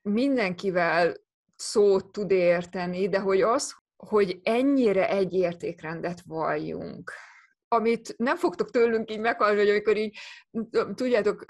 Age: 20-39